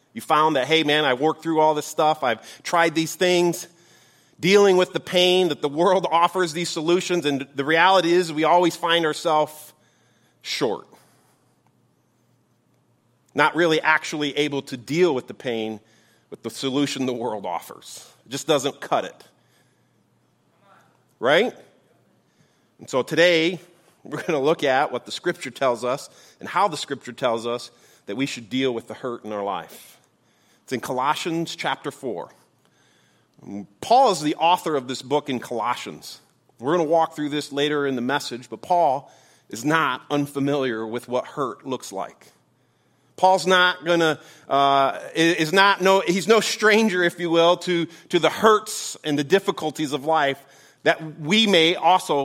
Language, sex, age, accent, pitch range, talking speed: English, male, 40-59, American, 130-170 Hz, 165 wpm